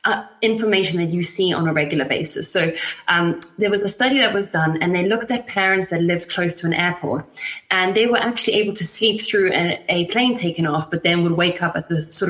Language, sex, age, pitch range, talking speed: English, female, 20-39, 155-200 Hz, 245 wpm